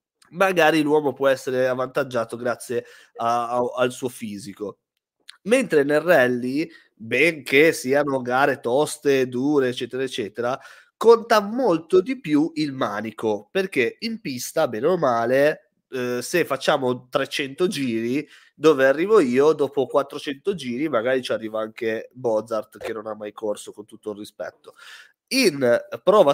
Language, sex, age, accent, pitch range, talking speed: Italian, male, 20-39, native, 125-155 Hz, 130 wpm